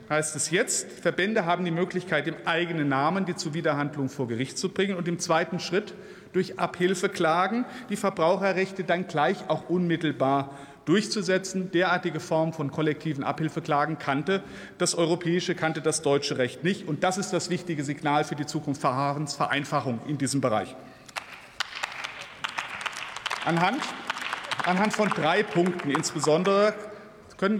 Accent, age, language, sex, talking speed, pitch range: German, 50-69, German, male, 135 wpm, 145-190 Hz